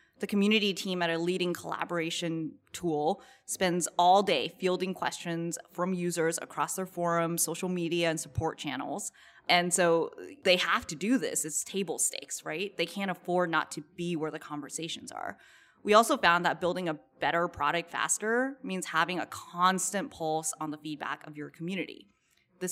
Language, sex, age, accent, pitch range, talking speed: English, female, 20-39, American, 165-190 Hz, 170 wpm